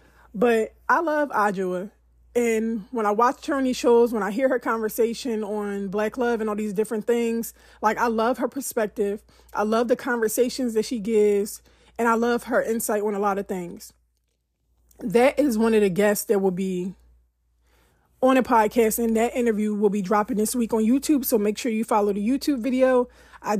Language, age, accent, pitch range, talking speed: English, 20-39, American, 205-245 Hz, 200 wpm